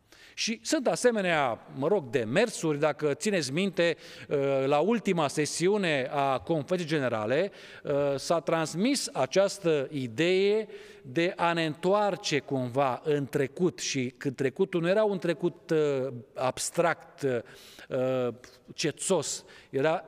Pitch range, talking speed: 140-190 Hz, 110 wpm